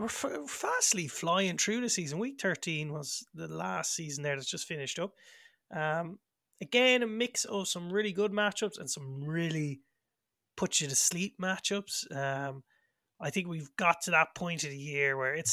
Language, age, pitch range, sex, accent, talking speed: English, 20-39, 140-205 Hz, male, Irish, 180 wpm